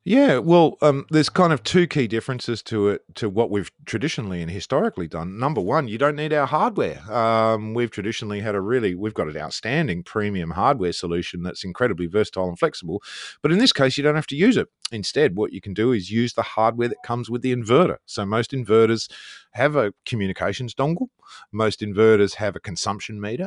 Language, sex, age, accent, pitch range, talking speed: English, male, 30-49, Australian, 95-130 Hz, 205 wpm